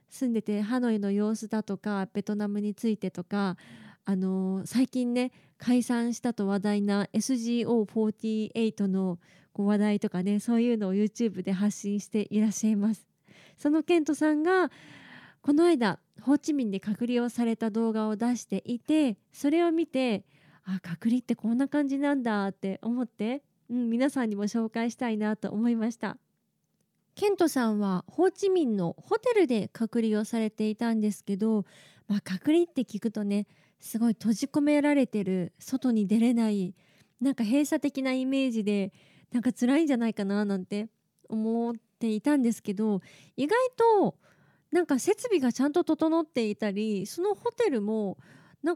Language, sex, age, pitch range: Japanese, female, 20-39, 205-270 Hz